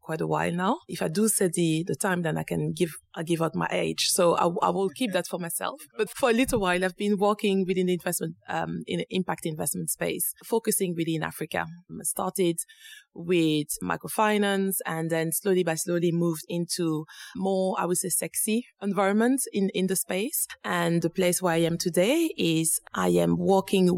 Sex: female